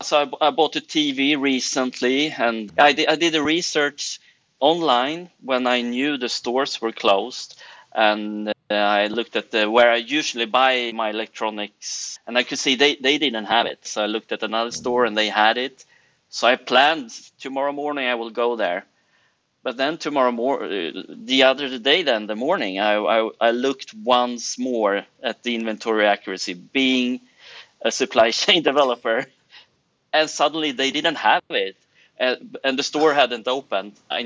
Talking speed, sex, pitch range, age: 175 wpm, male, 115-140 Hz, 30-49